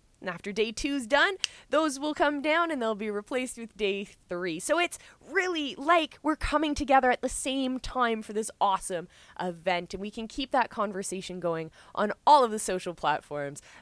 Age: 20-39